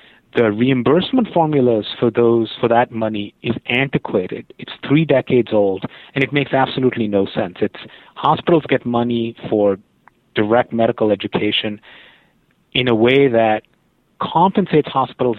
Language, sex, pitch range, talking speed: English, male, 115-155 Hz, 135 wpm